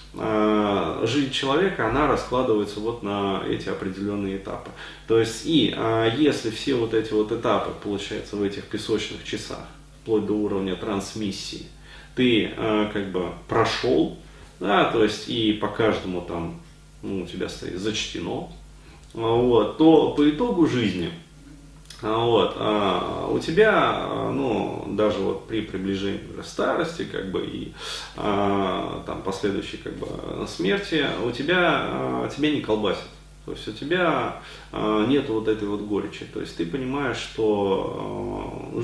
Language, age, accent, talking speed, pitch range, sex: Russian, 30-49, native, 140 wpm, 100-120 Hz, male